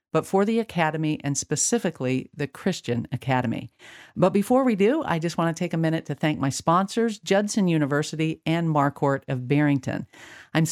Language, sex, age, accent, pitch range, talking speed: English, female, 50-69, American, 145-195 Hz, 175 wpm